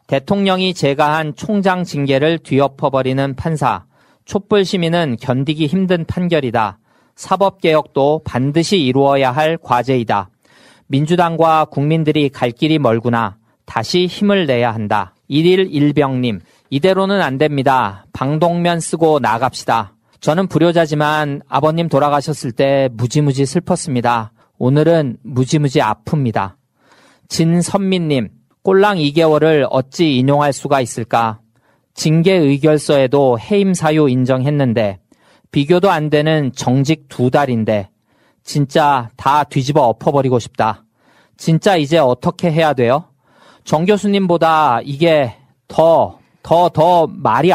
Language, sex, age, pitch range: English, male, 40-59, 130-170 Hz